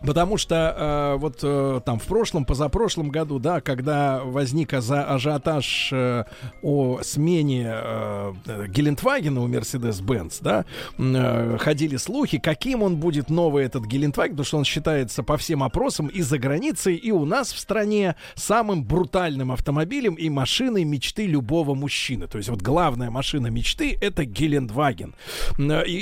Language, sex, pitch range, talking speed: Russian, male, 130-175 Hz, 150 wpm